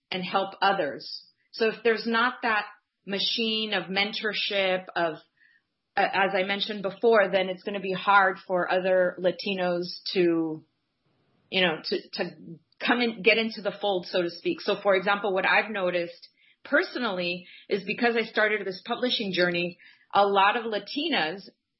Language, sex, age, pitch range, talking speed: English, female, 30-49, 185-230 Hz, 160 wpm